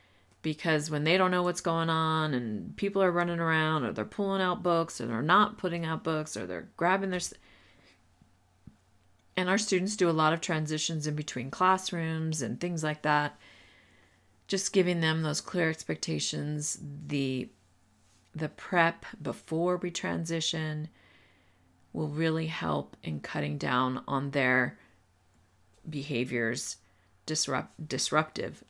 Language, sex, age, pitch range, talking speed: English, female, 40-59, 105-175 Hz, 140 wpm